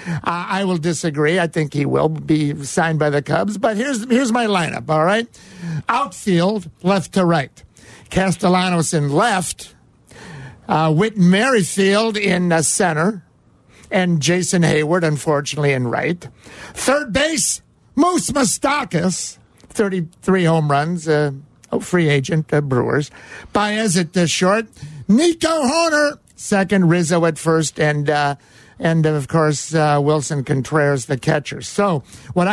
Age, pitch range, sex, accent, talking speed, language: 50-69, 155-195 Hz, male, American, 135 wpm, English